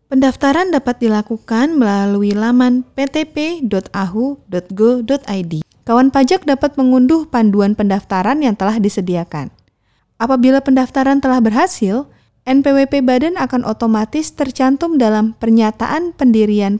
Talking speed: 95 wpm